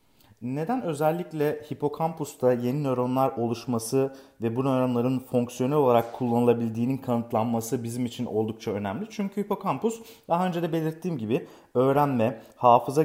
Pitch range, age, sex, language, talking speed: 115-165 Hz, 40-59, male, Turkish, 120 wpm